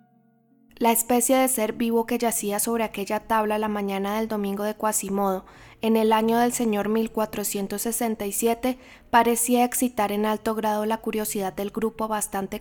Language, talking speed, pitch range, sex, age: Spanish, 150 wpm, 205-230 Hz, female, 10-29